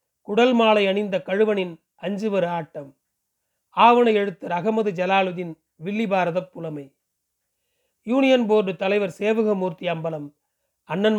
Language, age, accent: Tamil, 40-59, native